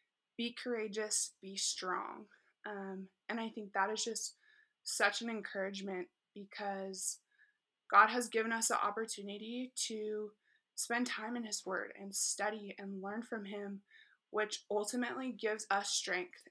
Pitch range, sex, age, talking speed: 205-240 Hz, female, 20-39, 140 wpm